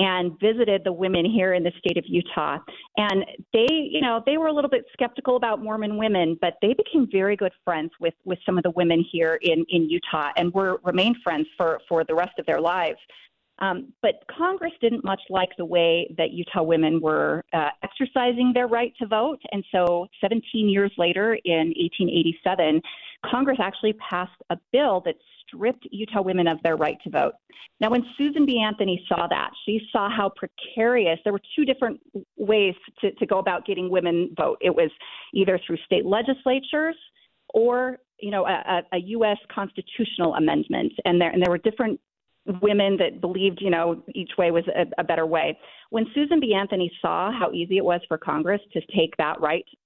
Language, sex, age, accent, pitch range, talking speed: English, female, 40-59, American, 175-230 Hz, 190 wpm